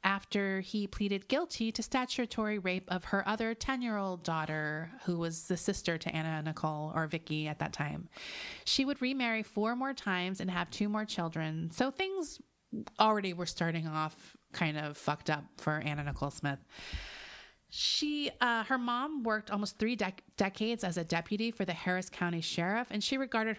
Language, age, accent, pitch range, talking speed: English, 30-49, American, 165-225 Hz, 175 wpm